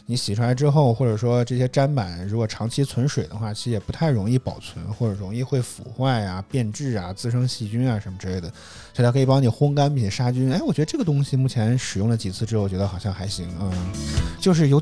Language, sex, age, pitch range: Chinese, male, 20-39, 105-145 Hz